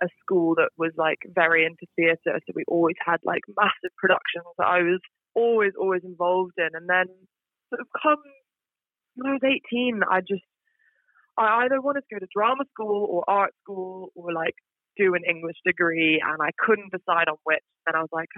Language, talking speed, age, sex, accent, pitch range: English, 195 wpm, 20-39, female, British, 170-220 Hz